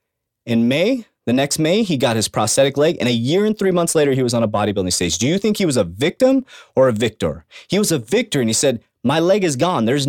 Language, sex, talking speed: English, male, 270 wpm